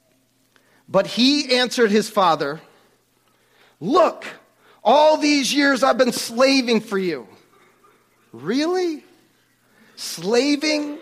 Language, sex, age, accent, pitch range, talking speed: English, male, 40-59, American, 180-250 Hz, 85 wpm